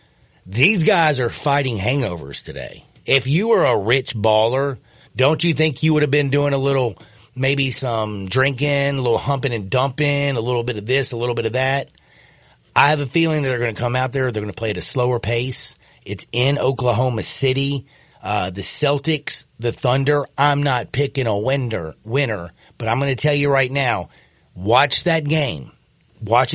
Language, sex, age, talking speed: English, male, 40-59, 195 wpm